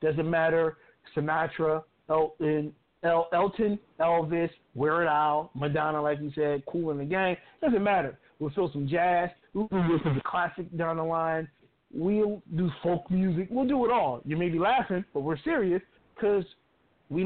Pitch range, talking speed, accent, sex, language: 155-190 Hz, 170 wpm, American, male, English